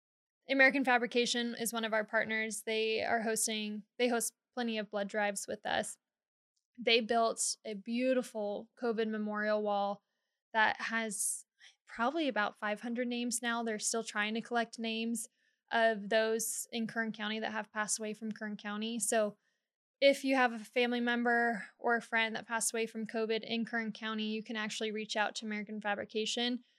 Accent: American